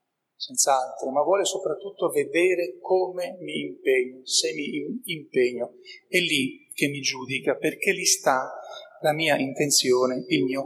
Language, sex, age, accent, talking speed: Italian, male, 40-59, native, 135 wpm